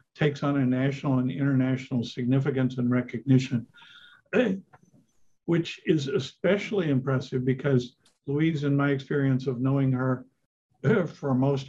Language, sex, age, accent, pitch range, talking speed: English, male, 60-79, American, 130-155 Hz, 120 wpm